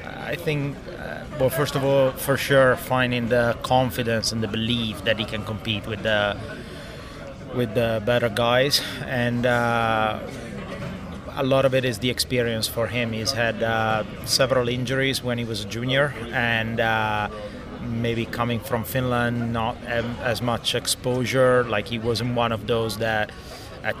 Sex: male